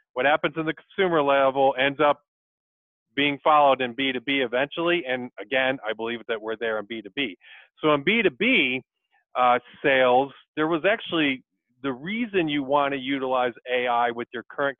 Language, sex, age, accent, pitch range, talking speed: English, male, 40-59, American, 125-155 Hz, 160 wpm